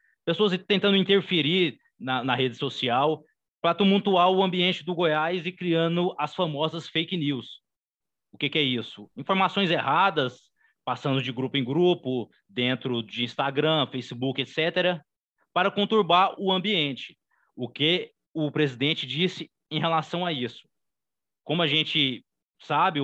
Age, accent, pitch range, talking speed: 20-39, Brazilian, 120-165 Hz, 140 wpm